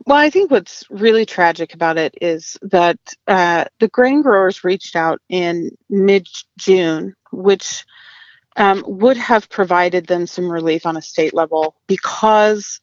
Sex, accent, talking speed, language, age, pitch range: female, American, 145 wpm, English, 30-49, 170-200 Hz